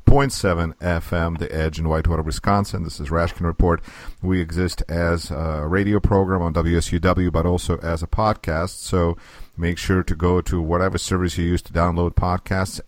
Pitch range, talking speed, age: 85-105 Hz, 170 wpm, 50-69